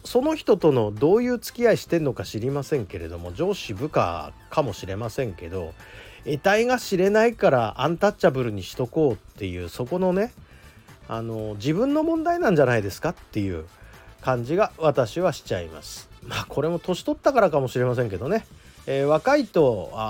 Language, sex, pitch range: Japanese, male, 100-155 Hz